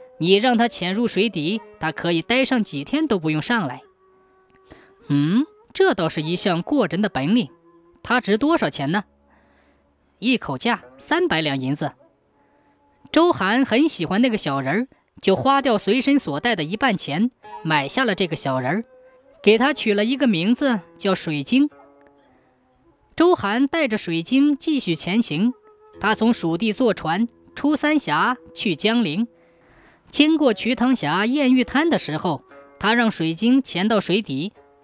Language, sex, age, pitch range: Chinese, female, 20-39, 170-275 Hz